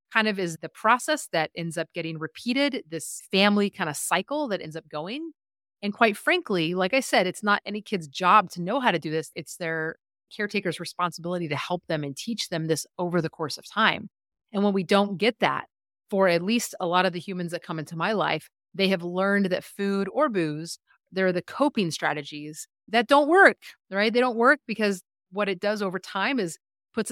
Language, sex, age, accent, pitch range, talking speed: English, female, 30-49, American, 165-210 Hz, 215 wpm